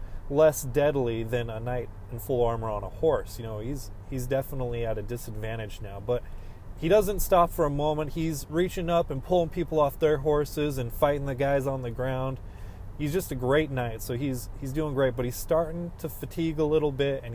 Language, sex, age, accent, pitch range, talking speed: English, male, 20-39, American, 105-140 Hz, 215 wpm